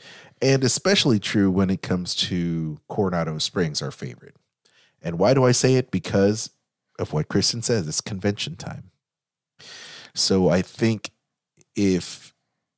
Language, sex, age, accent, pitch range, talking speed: English, male, 30-49, American, 90-115 Hz, 135 wpm